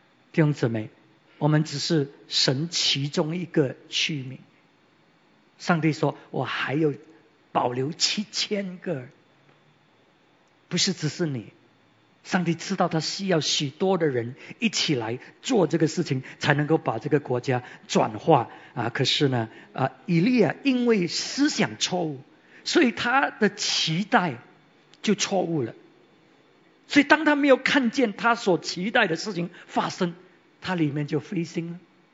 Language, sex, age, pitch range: English, male, 50-69, 140-185 Hz